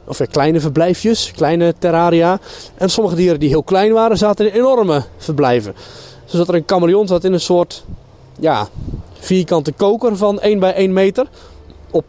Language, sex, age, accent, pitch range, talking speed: Dutch, male, 20-39, Dutch, 135-185 Hz, 165 wpm